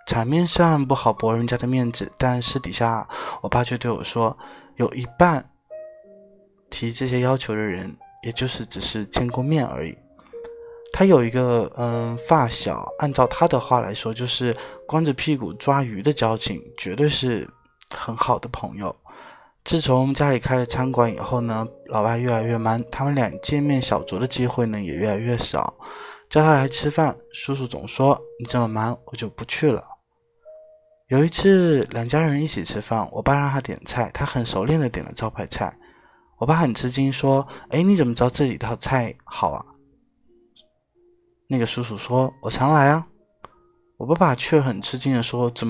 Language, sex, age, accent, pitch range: Chinese, male, 20-39, native, 115-150 Hz